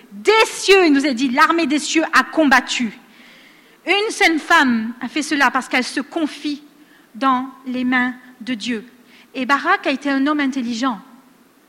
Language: French